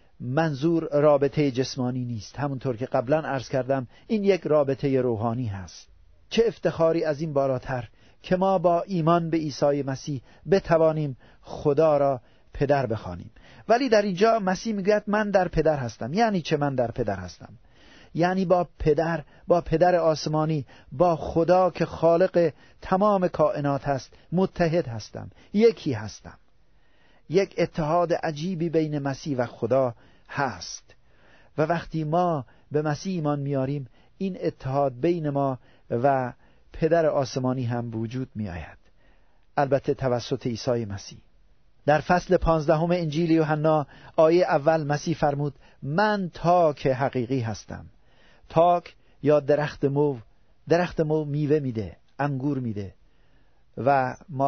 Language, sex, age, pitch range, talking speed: Persian, male, 50-69, 130-165 Hz, 130 wpm